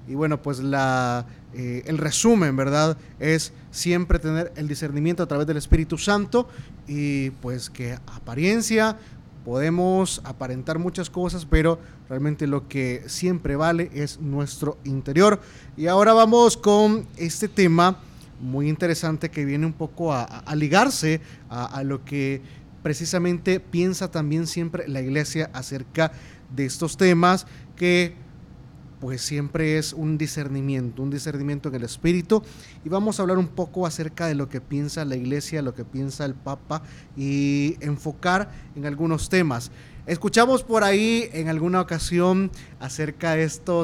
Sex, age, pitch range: male, 30-49, 140-175 Hz